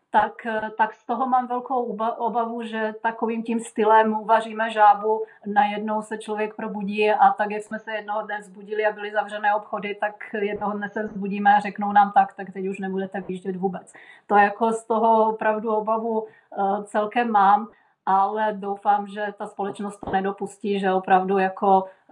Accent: native